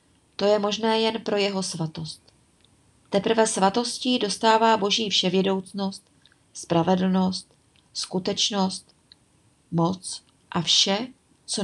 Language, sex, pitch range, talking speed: Czech, female, 180-220 Hz, 95 wpm